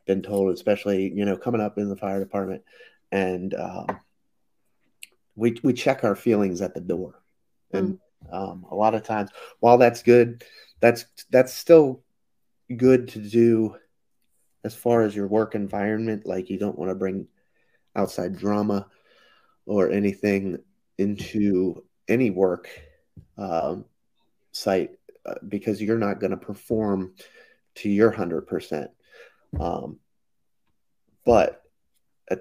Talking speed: 130 wpm